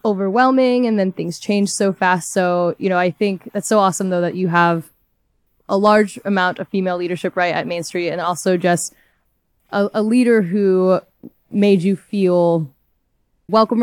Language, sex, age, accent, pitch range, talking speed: English, female, 20-39, American, 175-210 Hz, 175 wpm